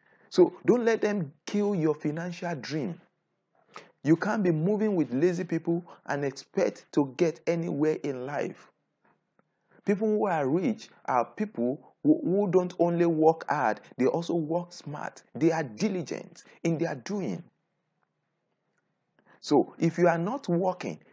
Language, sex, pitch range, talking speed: English, male, 135-180 Hz, 140 wpm